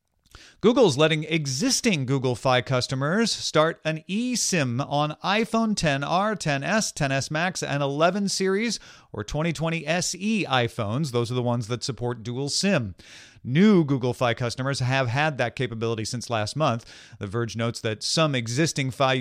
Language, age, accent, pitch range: English, 40-59, American, 115-155 Hz